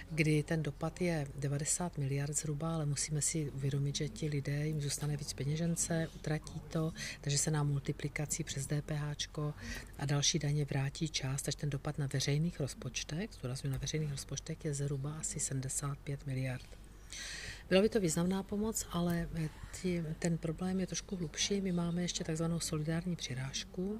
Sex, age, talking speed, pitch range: female, 50-69, 155 wpm, 140-165 Hz